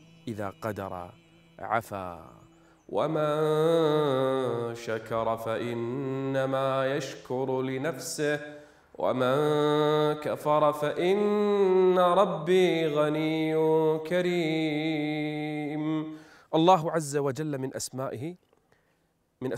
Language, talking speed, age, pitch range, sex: Arabic, 60 wpm, 30-49, 130-180 Hz, male